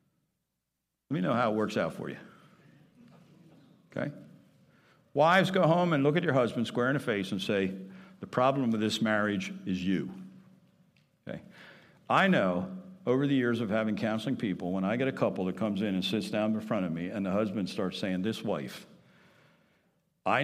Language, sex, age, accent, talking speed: English, male, 60-79, American, 190 wpm